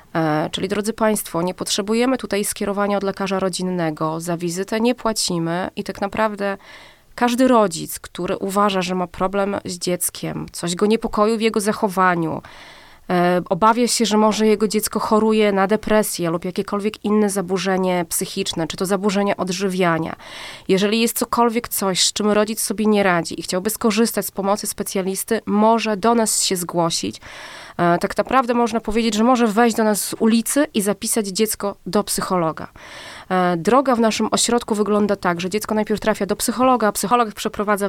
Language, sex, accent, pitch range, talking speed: Polish, female, native, 185-220 Hz, 160 wpm